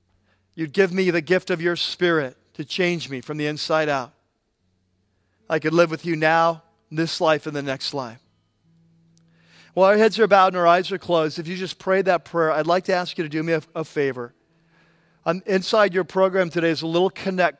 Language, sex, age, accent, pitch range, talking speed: English, male, 40-59, American, 150-175 Hz, 215 wpm